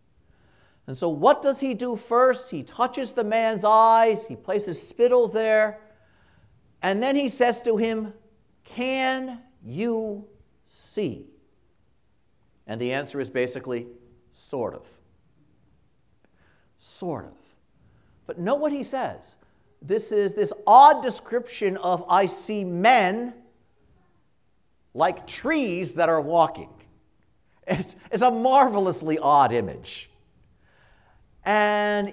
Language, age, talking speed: English, 50-69, 110 wpm